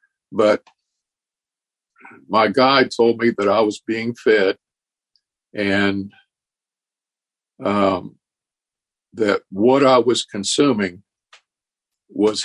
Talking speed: 85 wpm